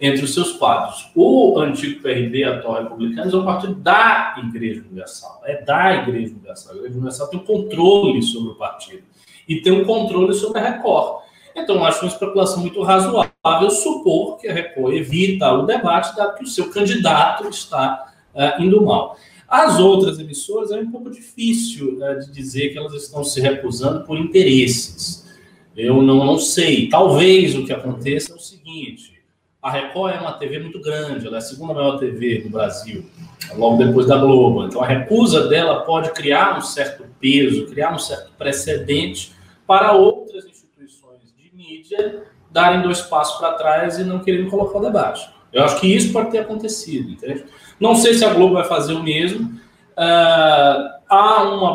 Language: Portuguese